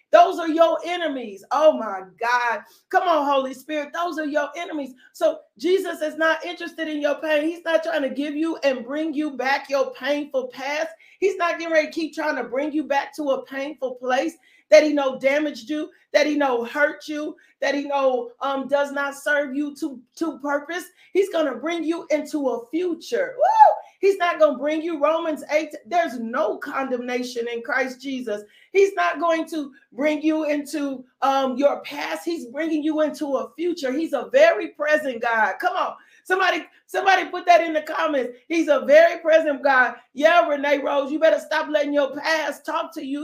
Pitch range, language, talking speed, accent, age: 275-325 Hz, English, 195 wpm, American, 40-59